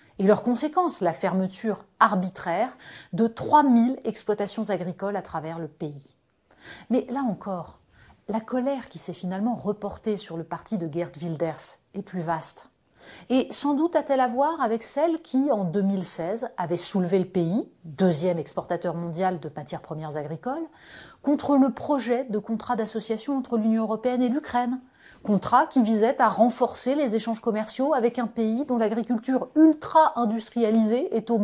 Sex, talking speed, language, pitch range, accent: female, 155 wpm, French, 180-250 Hz, French